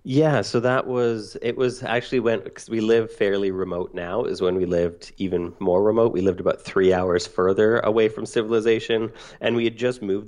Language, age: English, 30-49